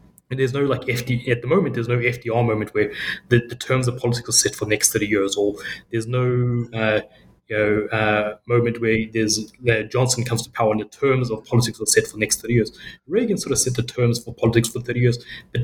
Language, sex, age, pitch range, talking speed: English, male, 30-49, 110-125 Hz, 245 wpm